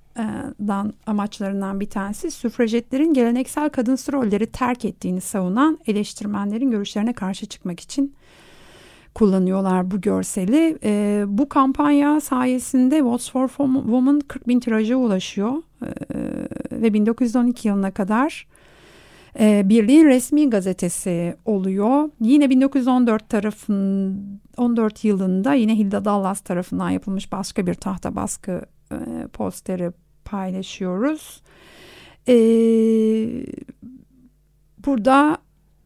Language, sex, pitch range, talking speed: Turkish, female, 195-255 Hz, 90 wpm